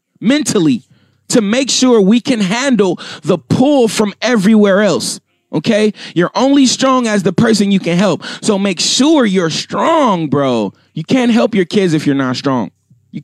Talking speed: 170 wpm